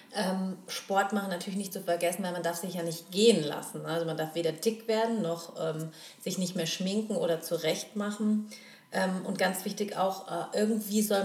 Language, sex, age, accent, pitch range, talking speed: German, female, 30-49, German, 170-215 Hz, 205 wpm